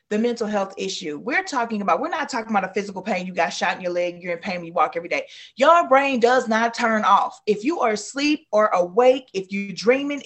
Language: English